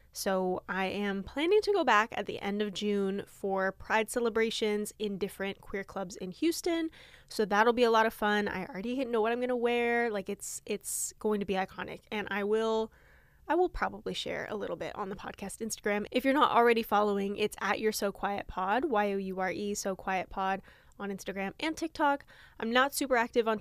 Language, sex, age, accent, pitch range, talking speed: English, female, 10-29, American, 200-240 Hz, 205 wpm